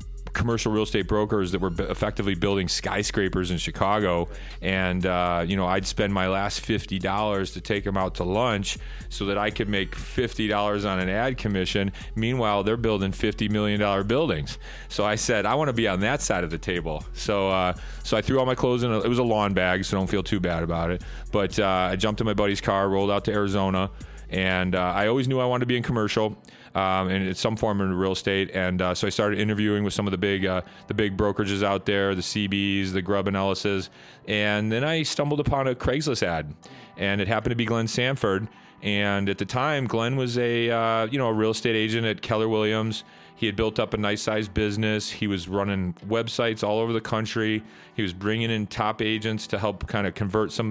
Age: 30-49